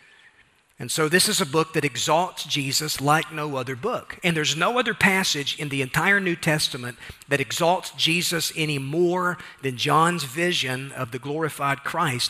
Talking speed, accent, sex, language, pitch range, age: 170 wpm, American, male, English, 140-175 Hz, 40-59